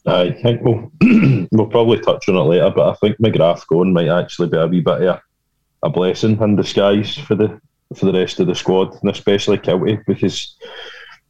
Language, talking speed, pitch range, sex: English, 200 wpm, 85-100 Hz, male